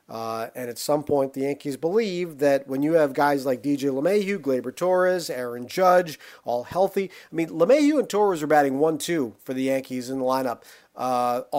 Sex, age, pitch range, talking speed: male, 40-59, 140-195 Hz, 190 wpm